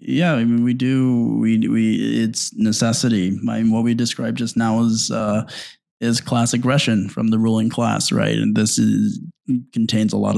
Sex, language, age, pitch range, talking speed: male, English, 20-39, 105-120 Hz, 185 wpm